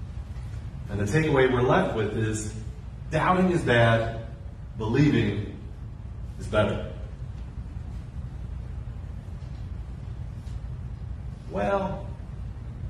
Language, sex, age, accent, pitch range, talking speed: English, male, 40-59, American, 105-140 Hz, 65 wpm